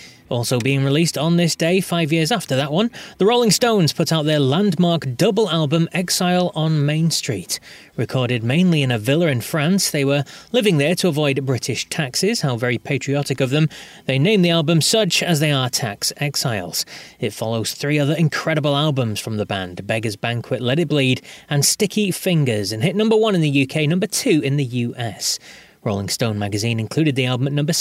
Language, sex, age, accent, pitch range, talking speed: English, male, 30-49, British, 130-180 Hz, 195 wpm